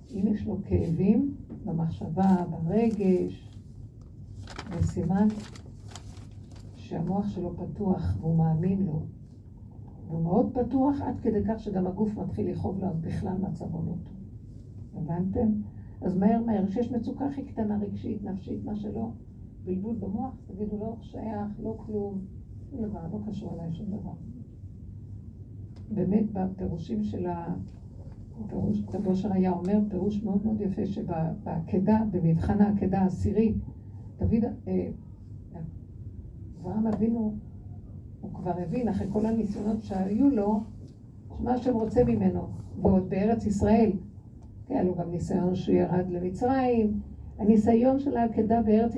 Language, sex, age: Hebrew, female, 60-79